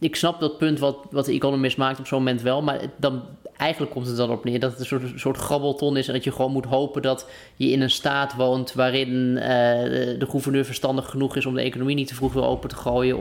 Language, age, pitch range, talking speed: Dutch, 20-39, 120-140 Hz, 260 wpm